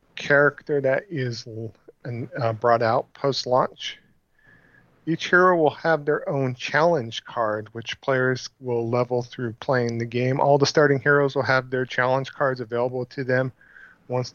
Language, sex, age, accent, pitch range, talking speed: English, male, 40-59, American, 120-140 Hz, 150 wpm